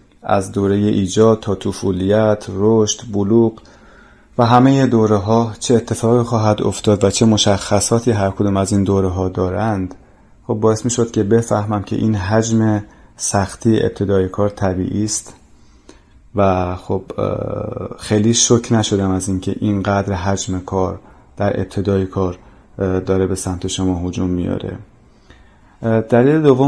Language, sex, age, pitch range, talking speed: Persian, male, 30-49, 95-110 Hz, 135 wpm